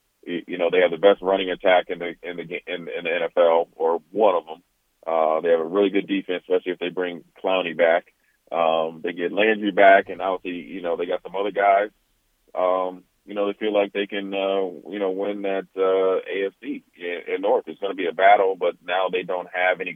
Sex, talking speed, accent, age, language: male, 230 wpm, American, 30-49, English